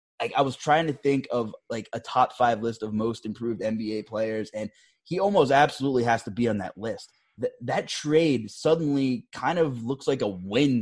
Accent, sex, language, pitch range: American, male, English, 115-165 Hz